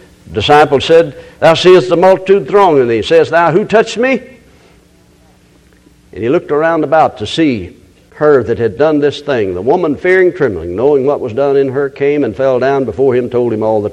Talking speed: 205 wpm